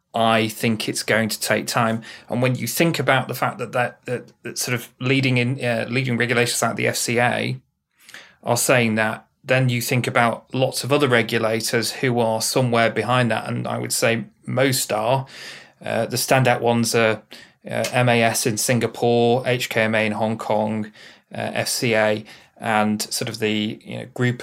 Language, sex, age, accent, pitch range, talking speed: English, male, 30-49, British, 115-135 Hz, 175 wpm